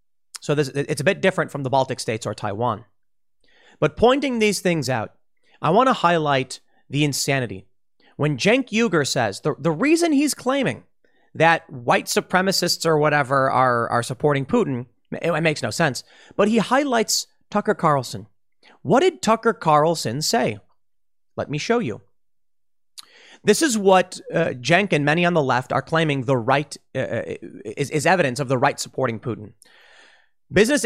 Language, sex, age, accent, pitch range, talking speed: English, male, 30-49, American, 140-210 Hz, 160 wpm